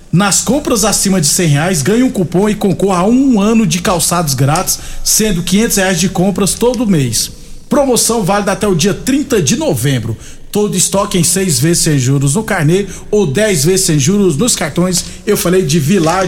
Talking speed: 190 wpm